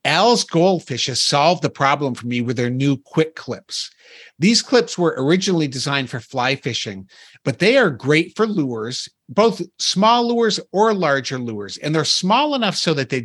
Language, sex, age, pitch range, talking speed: English, male, 50-69, 130-175 Hz, 180 wpm